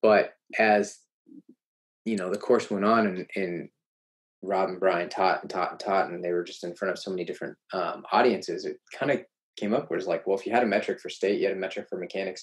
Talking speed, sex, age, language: 250 wpm, male, 20-39, English